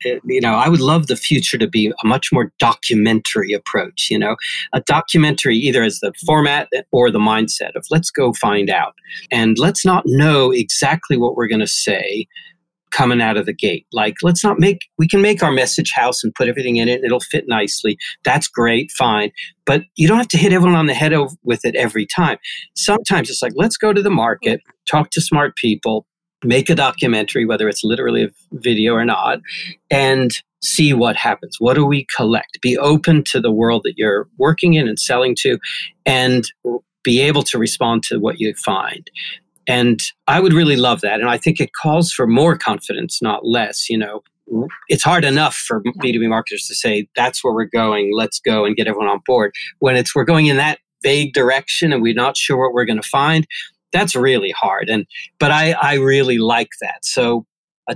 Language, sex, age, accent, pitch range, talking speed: English, male, 50-69, American, 115-165 Hz, 205 wpm